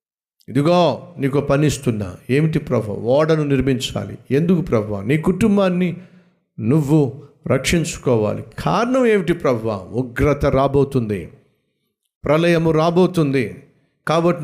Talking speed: 85 wpm